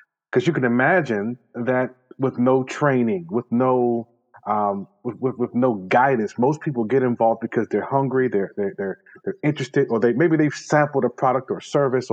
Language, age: English, 30-49